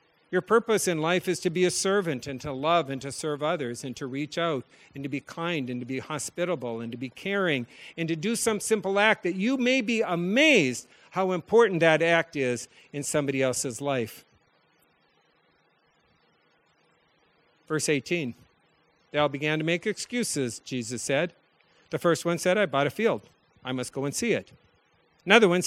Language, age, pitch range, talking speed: English, 50-69, 155-220 Hz, 180 wpm